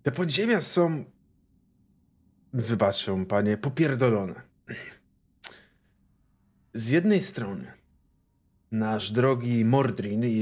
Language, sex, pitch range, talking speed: Polish, male, 105-130 Hz, 75 wpm